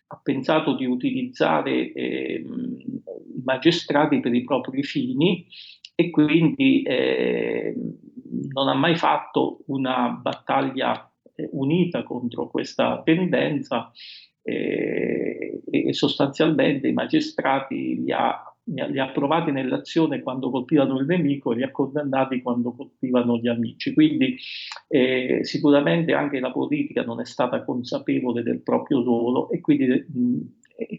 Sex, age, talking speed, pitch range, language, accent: male, 50-69, 120 wpm, 130-215 Hz, Italian, native